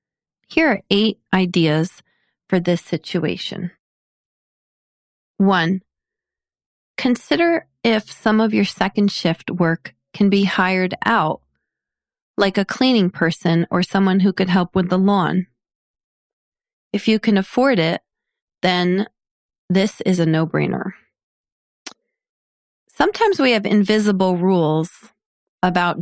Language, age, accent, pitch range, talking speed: English, 30-49, American, 175-215 Hz, 110 wpm